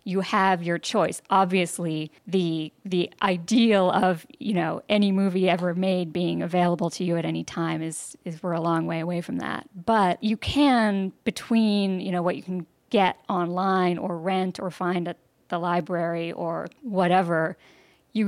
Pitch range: 170-195 Hz